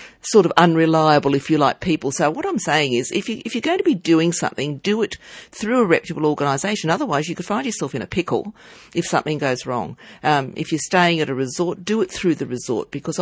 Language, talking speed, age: English, 230 wpm, 50-69